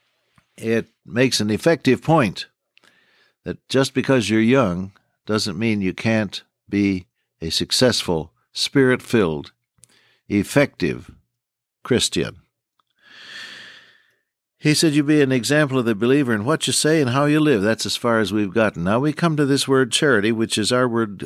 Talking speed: 150 wpm